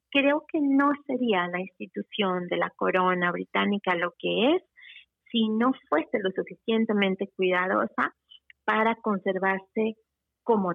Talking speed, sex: 125 wpm, female